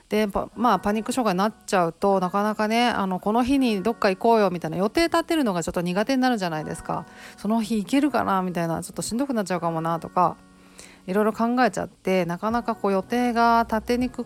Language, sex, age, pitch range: Japanese, female, 40-59, 175-230 Hz